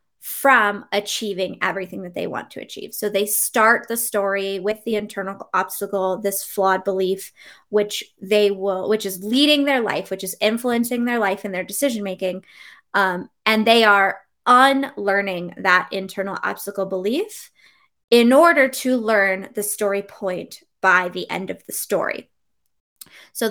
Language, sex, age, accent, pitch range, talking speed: English, female, 20-39, American, 195-235 Hz, 155 wpm